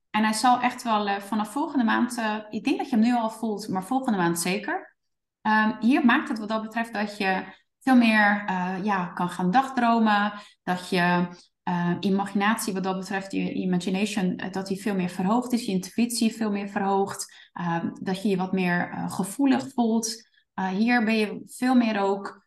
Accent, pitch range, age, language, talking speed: Dutch, 190-230 Hz, 20-39, Dutch, 200 wpm